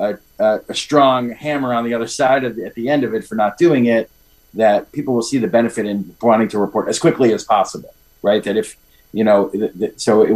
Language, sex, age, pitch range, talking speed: English, male, 40-59, 90-120 Hz, 245 wpm